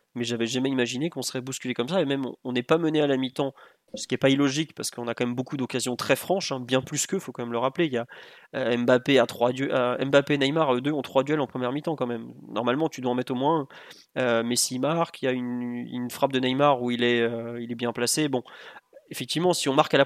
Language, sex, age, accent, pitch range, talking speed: French, male, 20-39, French, 125-155 Hz, 285 wpm